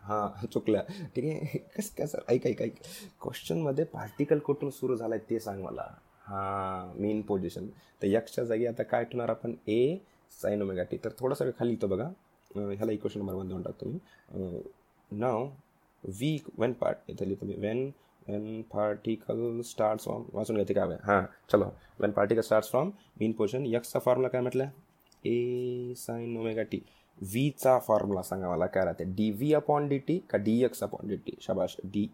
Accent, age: native, 20-39